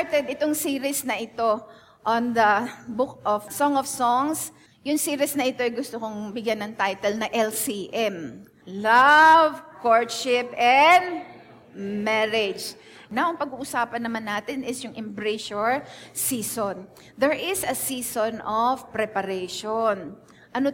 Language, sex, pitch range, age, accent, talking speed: English, female, 220-275 Hz, 20-39, Filipino, 125 wpm